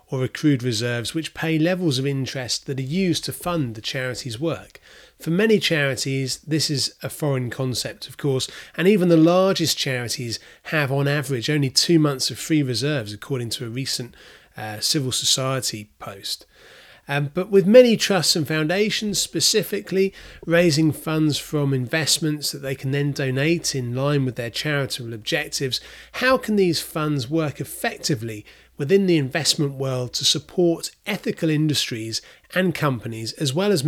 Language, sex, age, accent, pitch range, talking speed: English, male, 30-49, British, 135-175 Hz, 160 wpm